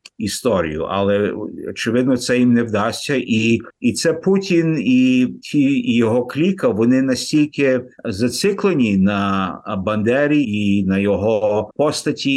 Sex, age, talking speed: male, 50-69, 120 wpm